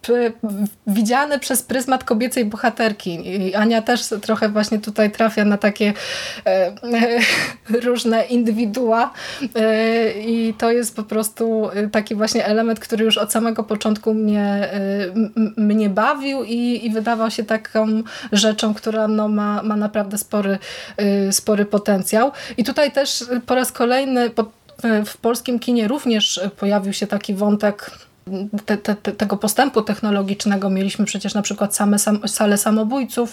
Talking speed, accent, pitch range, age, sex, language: 140 wpm, native, 205-235 Hz, 20-39, female, Polish